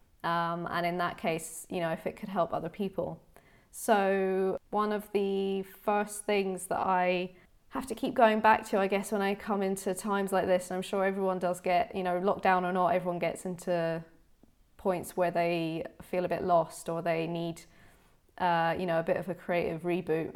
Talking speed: 205 wpm